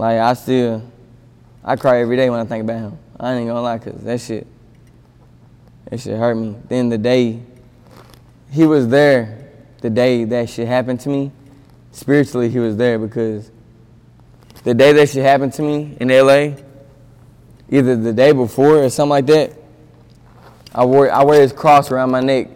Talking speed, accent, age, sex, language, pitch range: 175 wpm, American, 20-39, male, English, 120-140 Hz